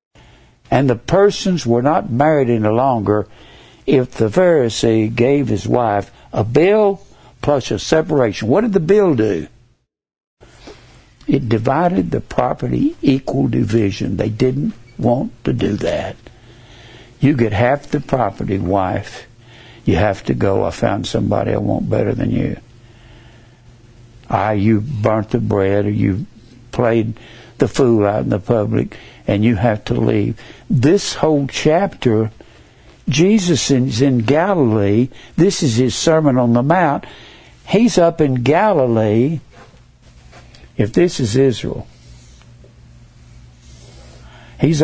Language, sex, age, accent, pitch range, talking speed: English, male, 60-79, American, 110-155 Hz, 130 wpm